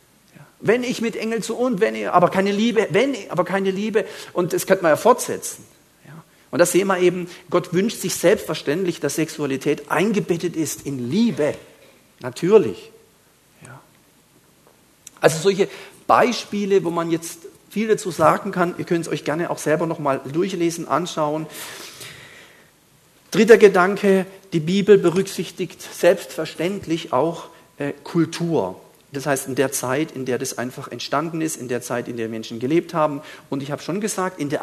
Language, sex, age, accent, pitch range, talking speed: German, male, 50-69, German, 150-195 Hz, 160 wpm